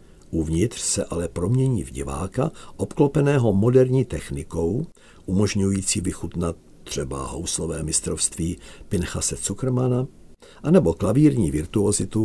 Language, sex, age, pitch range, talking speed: Czech, male, 50-69, 85-115 Hz, 95 wpm